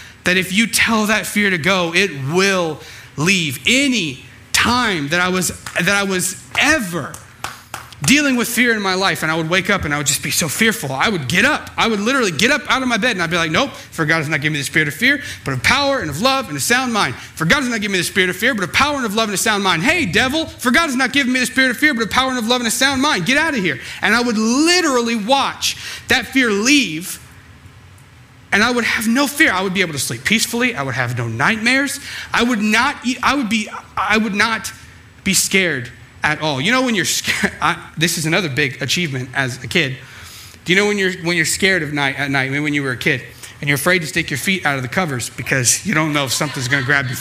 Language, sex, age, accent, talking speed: English, male, 30-49, American, 275 wpm